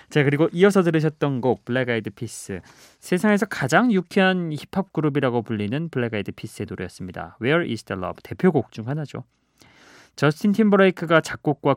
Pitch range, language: 120-180 Hz, Korean